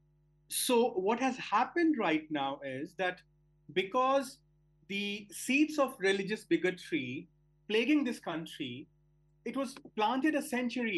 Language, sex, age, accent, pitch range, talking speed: English, male, 30-49, Indian, 155-235 Hz, 120 wpm